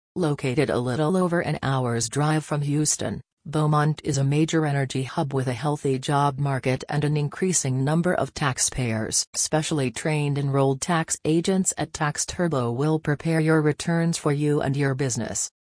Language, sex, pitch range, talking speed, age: English, female, 135-160 Hz, 165 wpm, 40-59